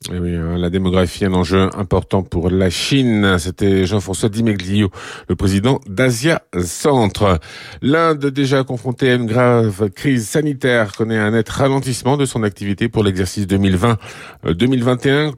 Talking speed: 135 wpm